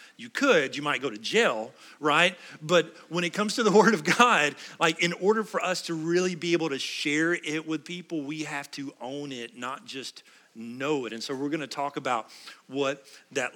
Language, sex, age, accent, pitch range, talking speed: English, male, 40-59, American, 115-150 Hz, 210 wpm